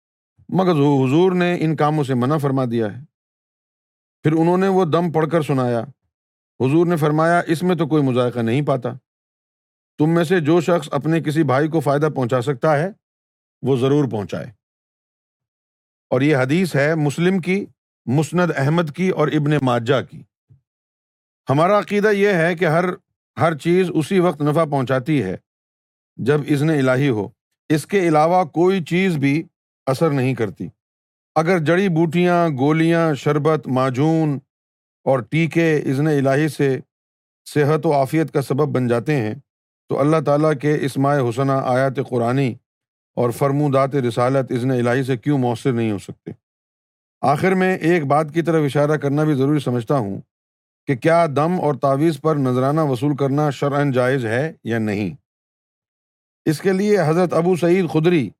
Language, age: Urdu, 50-69